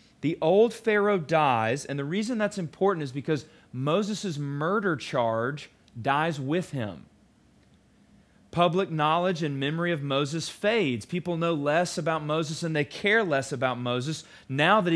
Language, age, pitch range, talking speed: English, 30-49, 135-185 Hz, 150 wpm